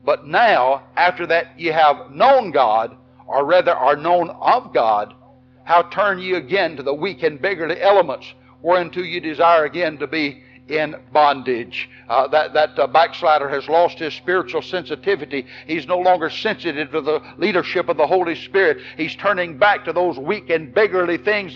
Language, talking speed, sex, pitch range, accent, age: English, 170 wpm, male, 125-180 Hz, American, 60-79